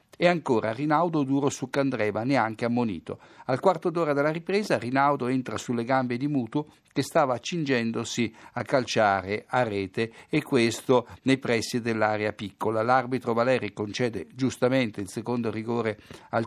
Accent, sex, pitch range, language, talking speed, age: native, male, 115-145 Hz, Italian, 145 wpm, 60-79